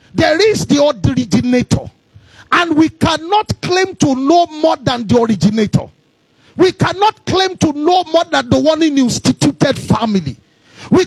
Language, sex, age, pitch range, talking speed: English, male, 40-59, 250-325 Hz, 150 wpm